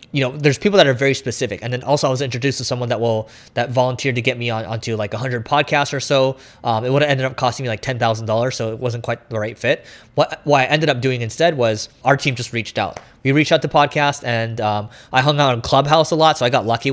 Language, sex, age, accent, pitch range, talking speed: English, male, 20-39, American, 120-140 Hz, 280 wpm